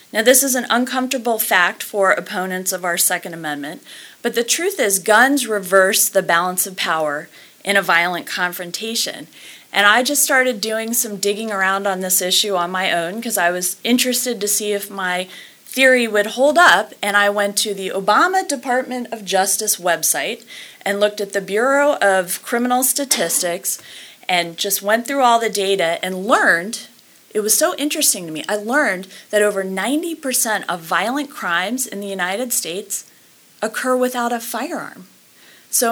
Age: 30-49